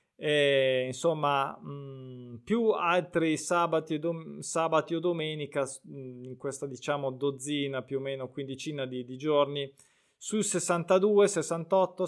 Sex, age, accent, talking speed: male, 20-39, native, 100 wpm